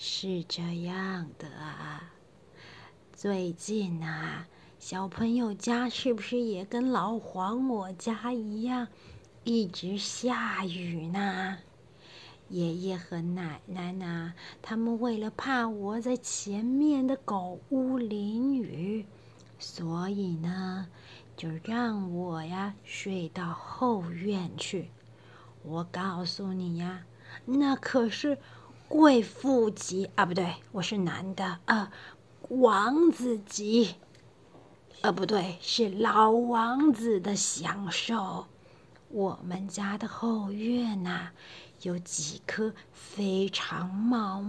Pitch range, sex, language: 185-235 Hz, female, Chinese